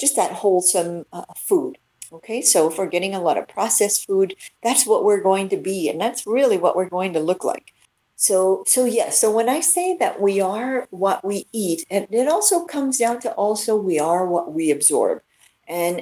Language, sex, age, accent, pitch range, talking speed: English, female, 50-69, American, 170-215 Hz, 215 wpm